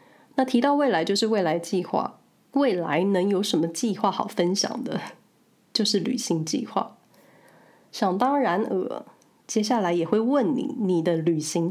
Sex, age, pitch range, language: female, 20-39, 185-245 Hz, Chinese